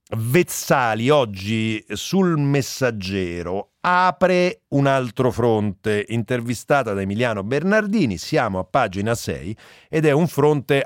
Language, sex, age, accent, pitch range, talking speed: Italian, male, 40-59, native, 105-150 Hz, 110 wpm